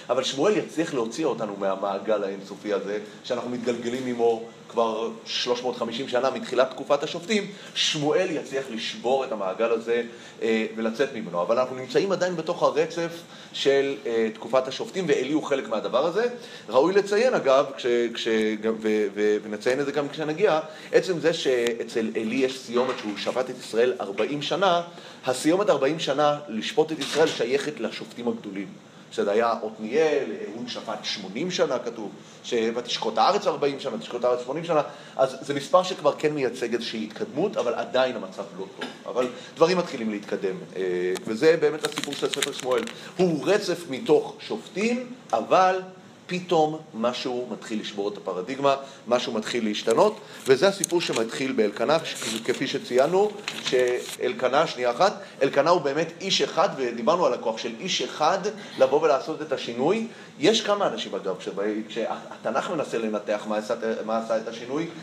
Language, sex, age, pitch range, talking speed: Hebrew, male, 30-49, 110-170 Hz, 155 wpm